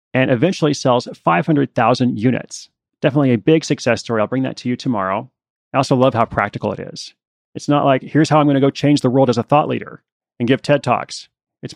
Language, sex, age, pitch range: English, male, 30-49, 110-135 Hz